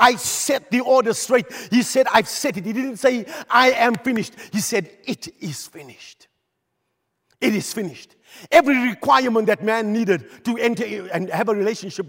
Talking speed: 175 wpm